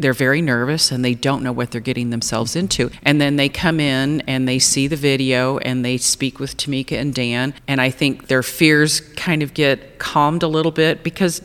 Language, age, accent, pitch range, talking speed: English, 40-59, American, 130-155 Hz, 220 wpm